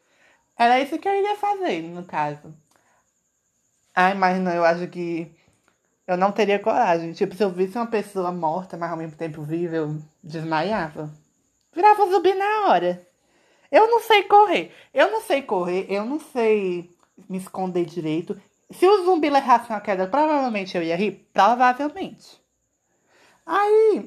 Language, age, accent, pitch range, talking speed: Portuguese, 20-39, Brazilian, 175-235 Hz, 155 wpm